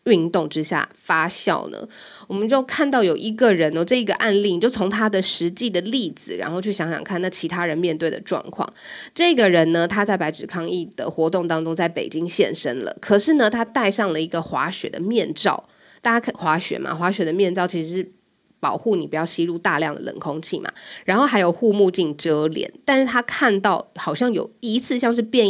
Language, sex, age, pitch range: Chinese, female, 20-39, 170-225 Hz